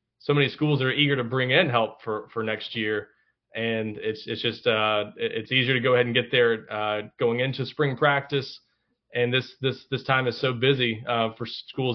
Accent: American